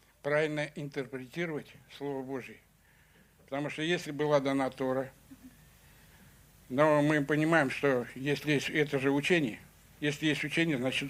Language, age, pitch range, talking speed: Russian, 70-89, 130-155 Hz, 125 wpm